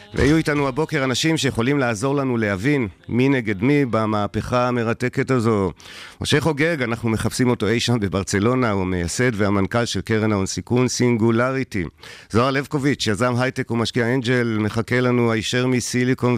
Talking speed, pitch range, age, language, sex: 145 wpm, 100-125 Hz, 50-69, Hebrew, male